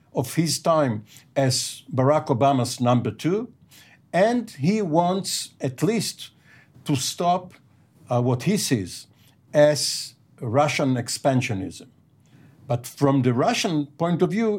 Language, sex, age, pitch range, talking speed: English, male, 50-69, 125-155 Hz, 120 wpm